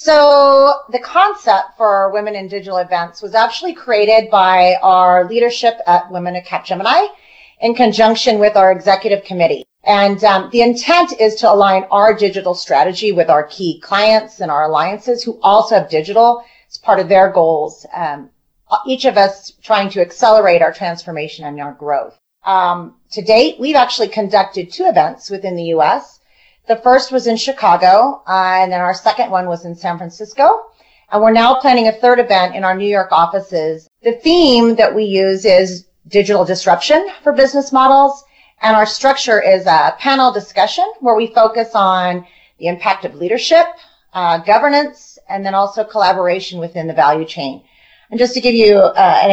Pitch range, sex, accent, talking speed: 185-240 Hz, female, American, 175 wpm